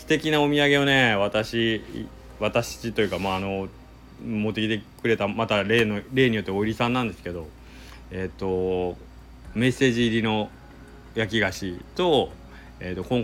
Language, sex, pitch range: Japanese, male, 90-120 Hz